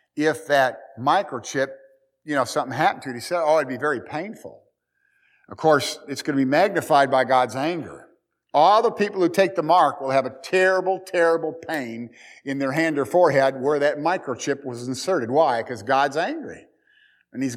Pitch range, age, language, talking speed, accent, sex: 140-205 Hz, 50-69, English, 190 wpm, American, male